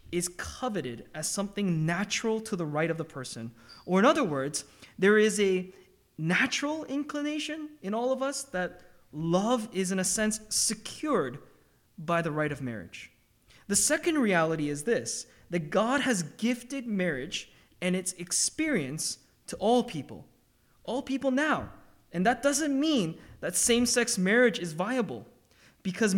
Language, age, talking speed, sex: English, 20-39, 150 wpm, male